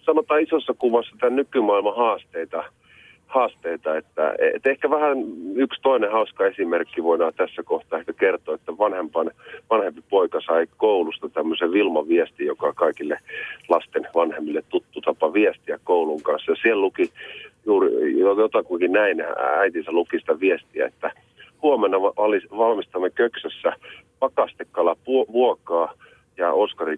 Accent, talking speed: native, 120 wpm